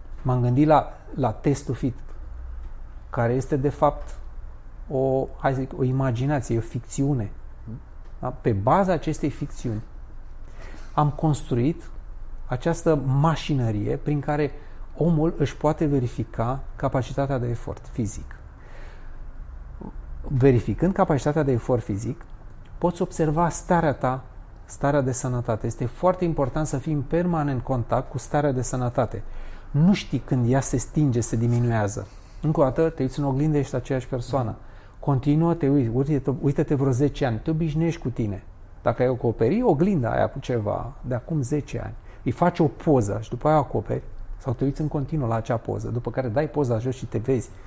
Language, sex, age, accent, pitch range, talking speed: Romanian, male, 30-49, native, 115-150 Hz, 155 wpm